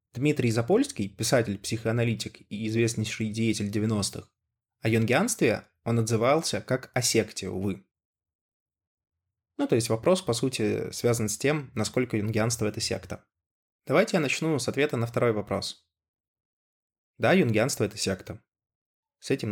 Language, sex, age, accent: Russian, male, 20-39, native